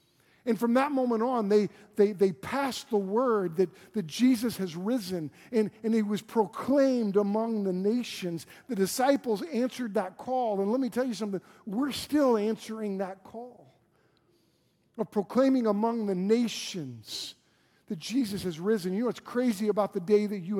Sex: male